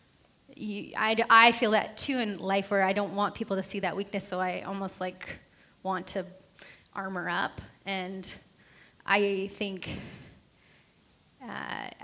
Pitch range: 185-205 Hz